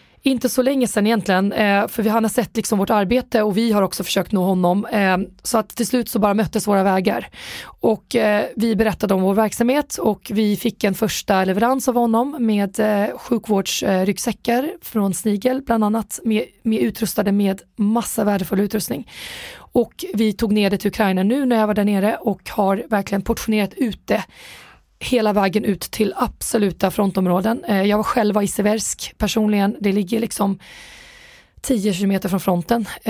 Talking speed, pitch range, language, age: 165 wpm, 200-230 Hz, Swedish, 20-39